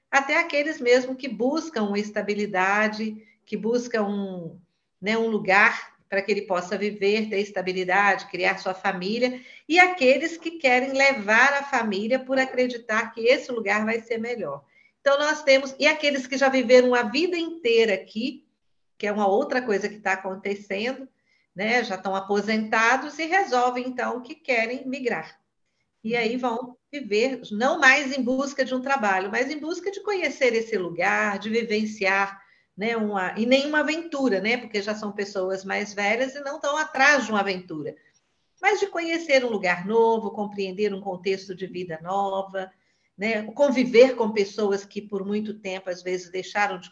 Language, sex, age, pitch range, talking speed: English, female, 50-69, 200-260 Hz, 165 wpm